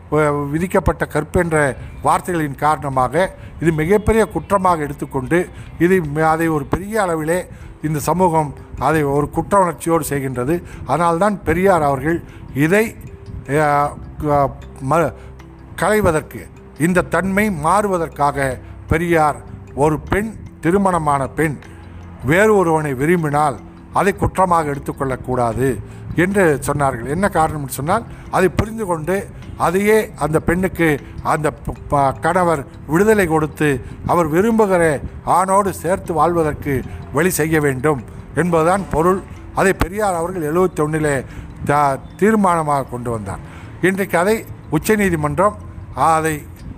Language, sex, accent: Tamil, male, native